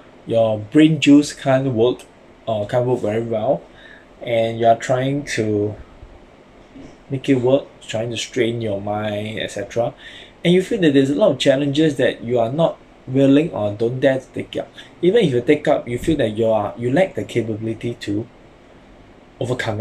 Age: 20-39